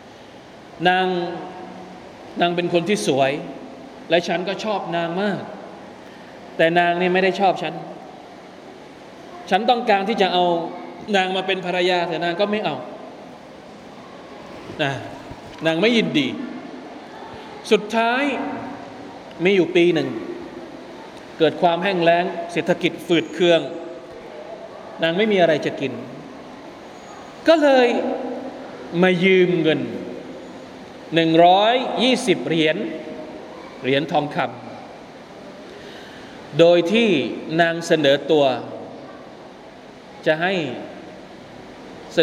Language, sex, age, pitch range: Thai, male, 20-39, 155-200 Hz